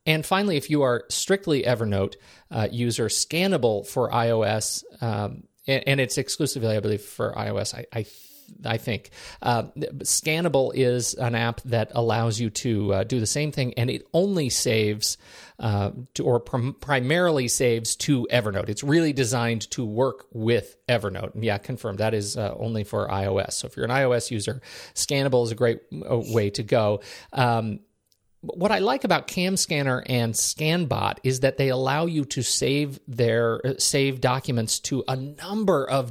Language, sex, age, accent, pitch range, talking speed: English, male, 40-59, American, 110-140 Hz, 170 wpm